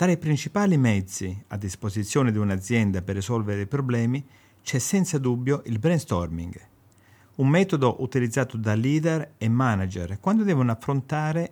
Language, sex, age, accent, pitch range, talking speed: Italian, male, 50-69, native, 105-140 Hz, 140 wpm